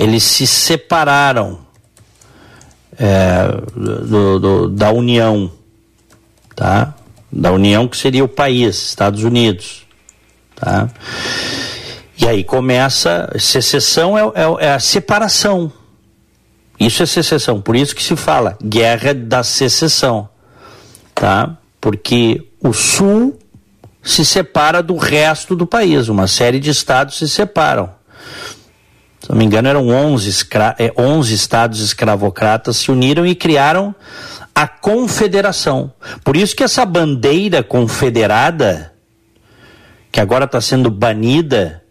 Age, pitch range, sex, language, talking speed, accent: 50-69, 110-155 Hz, male, Portuguese, 105 wpm, Brazilian